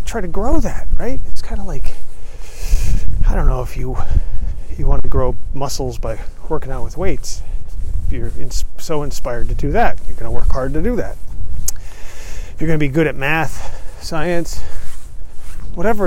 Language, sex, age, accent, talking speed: English, male, 30-49, American, 175 wpm